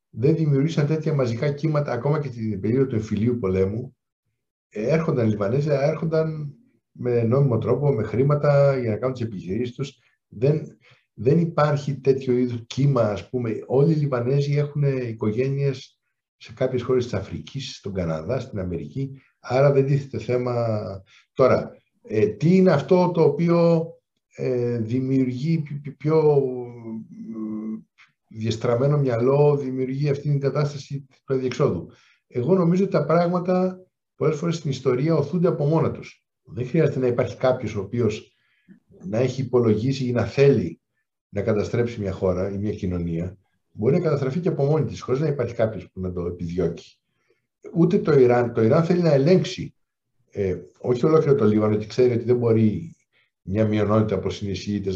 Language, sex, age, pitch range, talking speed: Greek, male, 60-79, 110-150 Hz, 150 wpm